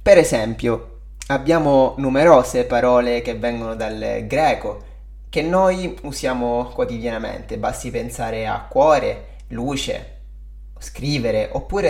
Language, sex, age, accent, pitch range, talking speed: Italian, male, 20-39, native, 110-135 Hz, 100 wpm